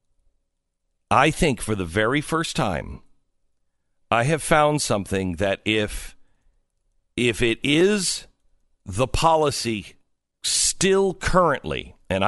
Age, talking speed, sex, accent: 50-69, 105 wpm, male, American